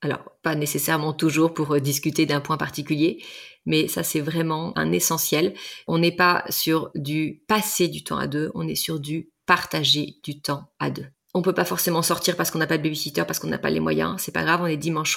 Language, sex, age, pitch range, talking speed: French, female, 30-49, 150-175 Hz, 225 wpm